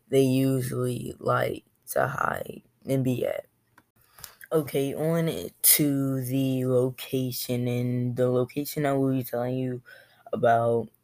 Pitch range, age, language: 125-145 Hz, 10-29, English